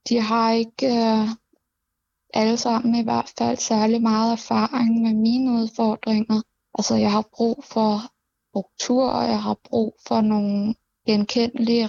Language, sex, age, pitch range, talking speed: Danish, female, 20-39, 215-235 Hz, 135 wpm